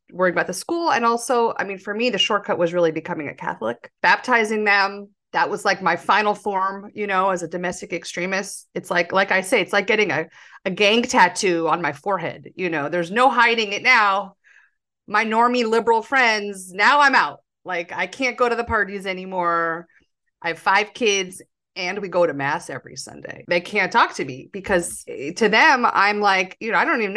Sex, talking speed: female, 210 wpm